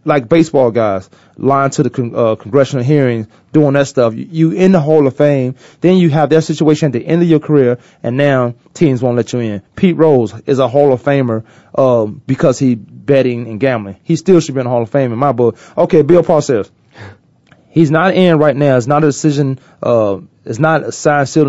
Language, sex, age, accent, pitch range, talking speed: English, male, 30-49, American, 120-150 Hz, 225 wpm